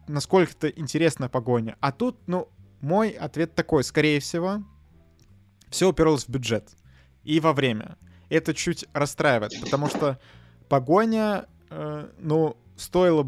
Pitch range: 120-155 Hz